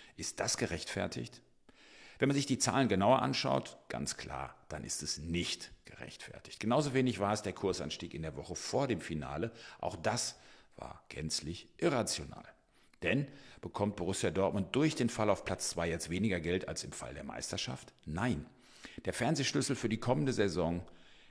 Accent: German